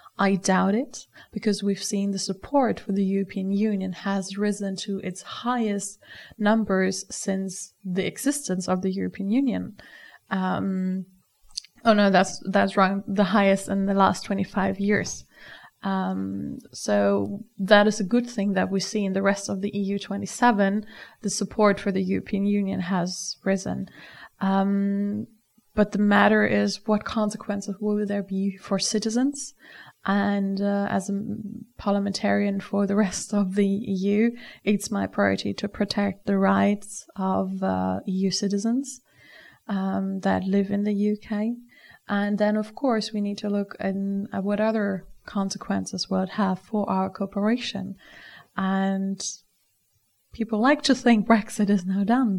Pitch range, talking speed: 195-210 Hz, 150 wpm